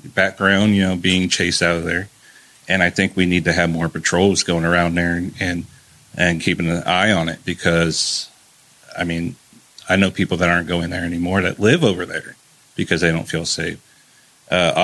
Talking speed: 200 wpm